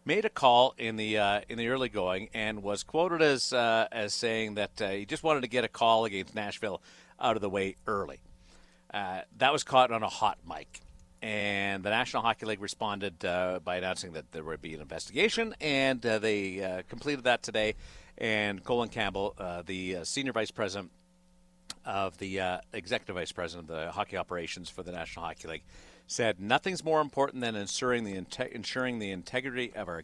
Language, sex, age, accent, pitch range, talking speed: English, male, 50-69, American, 100-125 Hz, 190 wpm